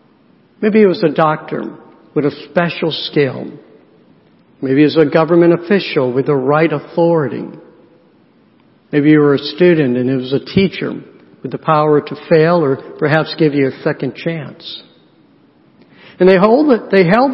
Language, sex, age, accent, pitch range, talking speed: English, male, 60-79, American, 165-205 Hz, 165 wpm